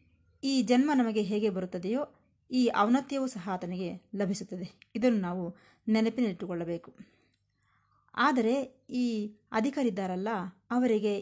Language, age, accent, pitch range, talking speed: Kannada, 20-39, native, 185-245 Hz, 90 wpm